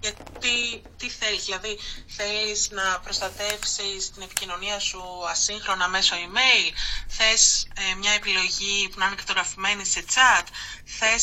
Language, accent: Greek, native